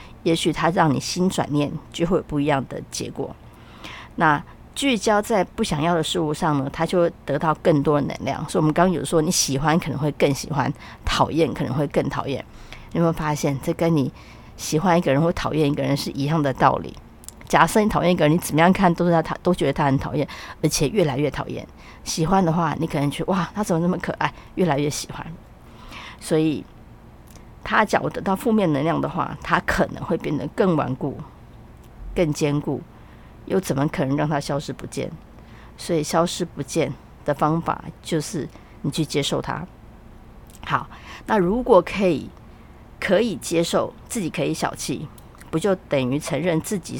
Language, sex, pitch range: Chinese, female, 140-170 Hz